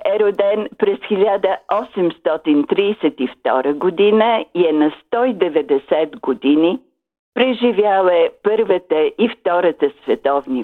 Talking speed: 90 wpm